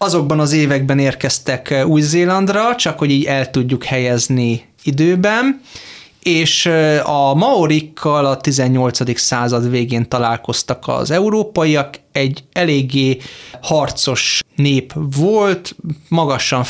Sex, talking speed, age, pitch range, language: male, 100 wpm, 30-49, 125-155 Hz, Hungarian